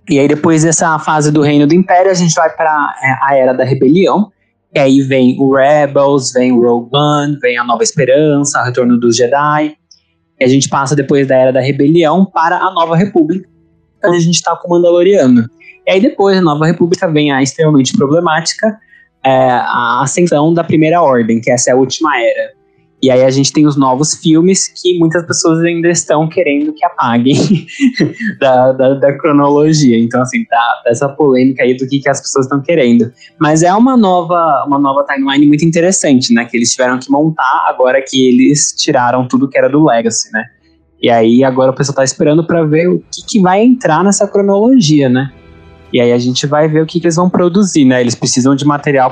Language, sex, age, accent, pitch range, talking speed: Portuguese, male, 20-39, Brazilian, 130-170 Hz, 205 wpm